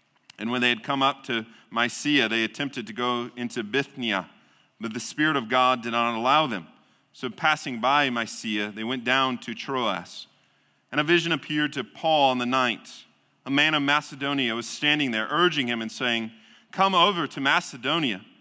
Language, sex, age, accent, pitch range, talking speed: English, male, 40-59, American, 120-150 Hz, 185 wpm